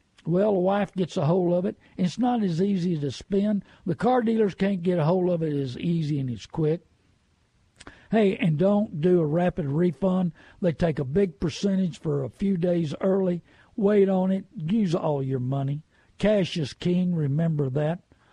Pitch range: 150-195 Hz